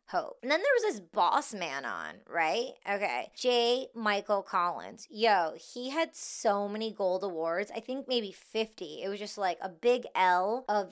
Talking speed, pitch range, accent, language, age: 175 wpm, 180-225 Hz, American, English, 20-39